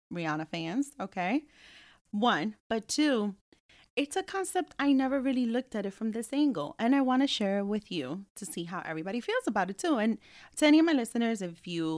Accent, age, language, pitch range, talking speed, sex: American, 30-49, English, 175-250 Hz, 205 wpm, female